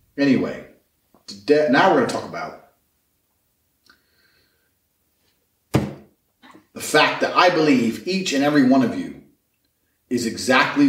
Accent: American